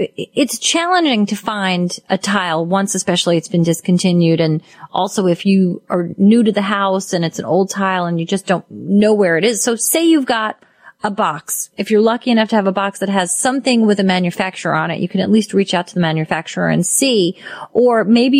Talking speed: 220 wpm